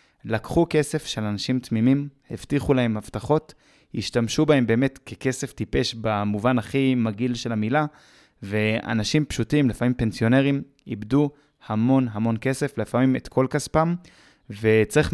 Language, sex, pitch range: Hebrew, male, 115-140 Hz